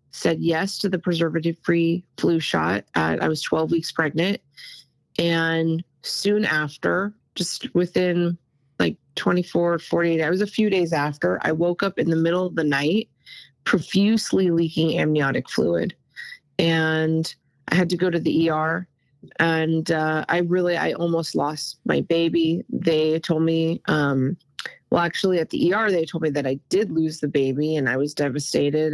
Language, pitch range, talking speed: English, 155-180 Hz, 165 wpm